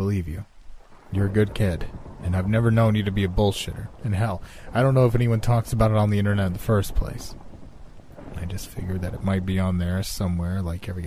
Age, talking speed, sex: 30-49, 240 wpm, male